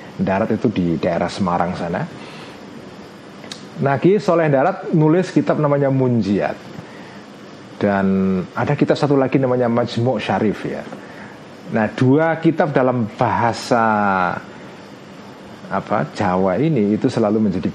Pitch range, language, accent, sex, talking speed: 110-155 Hz, Indonesian, native, male, 110 wpm